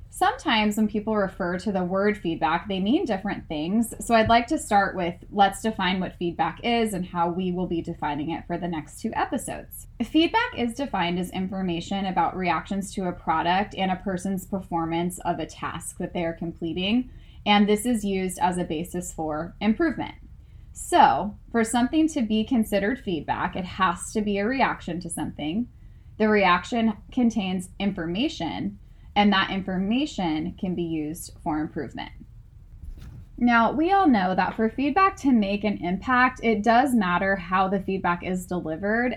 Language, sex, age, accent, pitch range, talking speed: English, female, 20-39, American, 175-225 Hz, 170 wpm